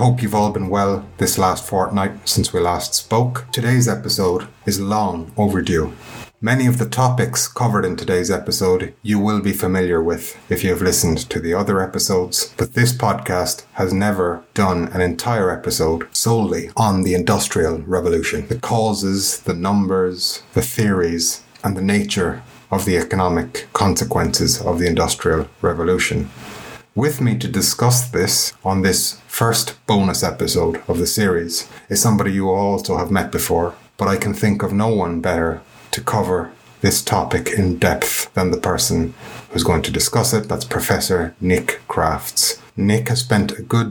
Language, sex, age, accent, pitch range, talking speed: English, male, 30-49, Irish, 90-110 Hz, 165 wpm